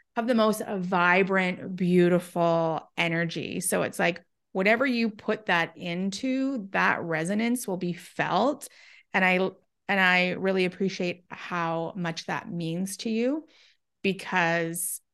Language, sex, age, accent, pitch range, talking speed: English, female, 30-49, American, 175-210 Hz, 125 wpm